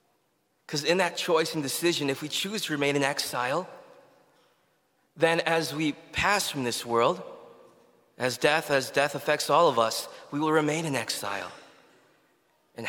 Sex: male